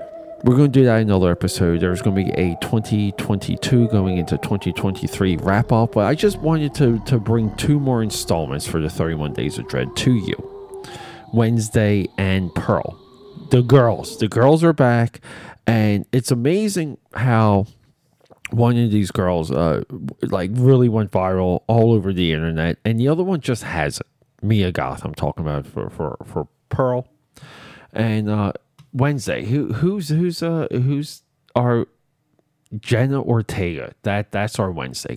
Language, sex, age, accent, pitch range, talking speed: English, male, 40-59, American, 95-135 Hz, 160 wpm